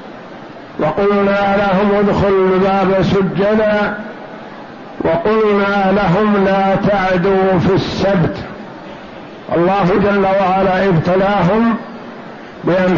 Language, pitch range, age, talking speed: Arabic, 185-205 Hz, 60-79, 75 wpm